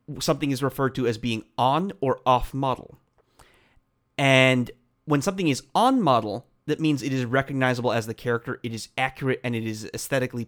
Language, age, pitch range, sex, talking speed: English, 30-49, 120-155 Hz, male, 180 wpm